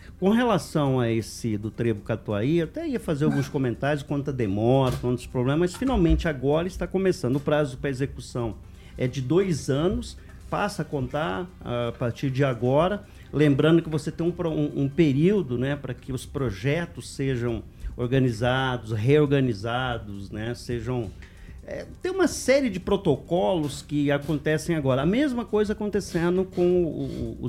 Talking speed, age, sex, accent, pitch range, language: 155 wpm, 50-69, male, Brazilian, 120-170 Hz, Portuguese